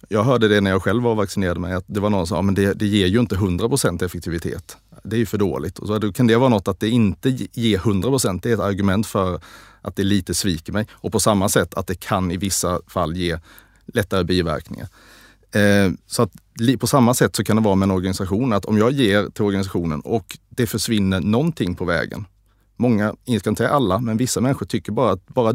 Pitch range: 95-110 Hz